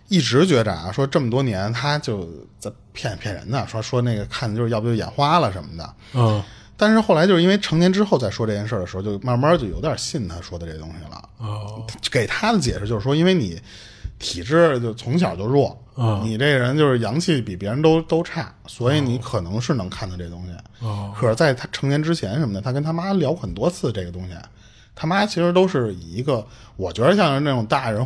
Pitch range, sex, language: 100-145 Hz, male, Chinese